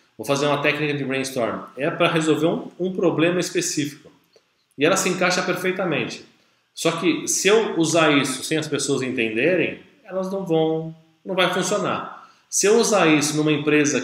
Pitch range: 130-170 Hz